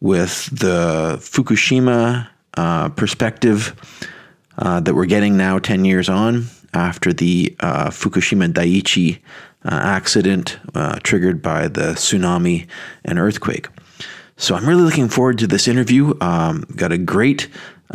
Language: English